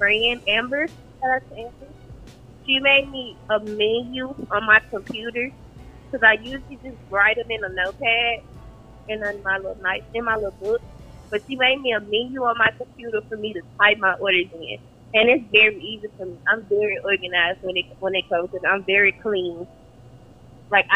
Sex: female